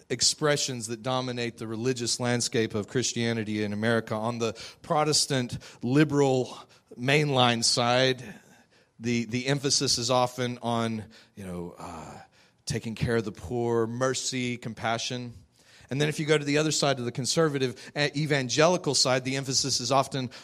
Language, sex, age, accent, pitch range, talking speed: English, male, 40-59, American, 120-155 Hz, 150 wpm